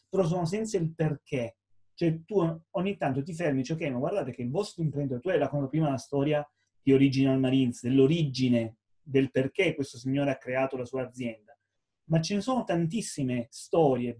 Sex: male